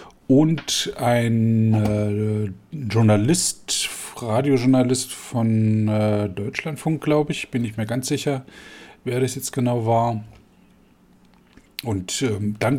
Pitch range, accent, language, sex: 105-130 Hz, German, German, male